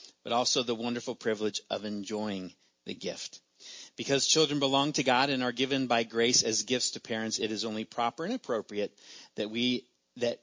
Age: 40-59